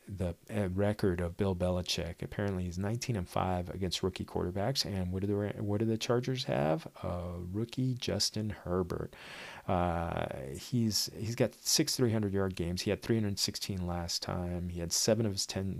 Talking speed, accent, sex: 170 wpm, American, male